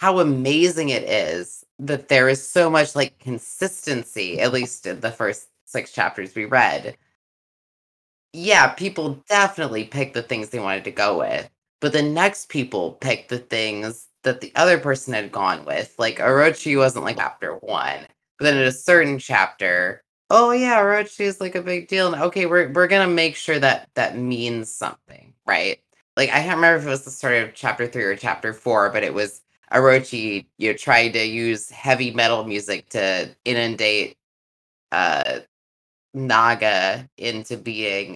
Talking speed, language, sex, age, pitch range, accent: 175 wpm, English, female, 20-39, 115-155 Hz, American